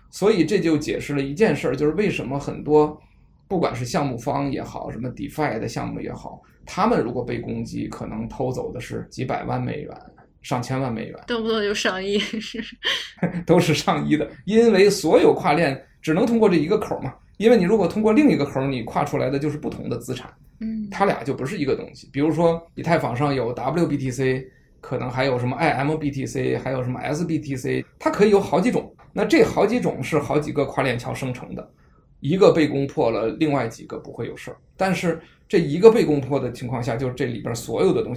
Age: 20-39